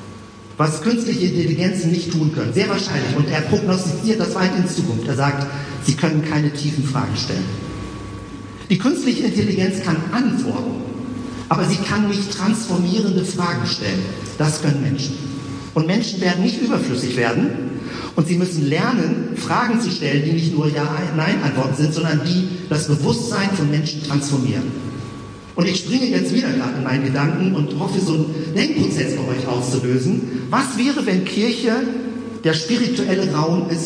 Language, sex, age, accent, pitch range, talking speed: German, male, 50-69, German, 140-195 Hz, 155 wpm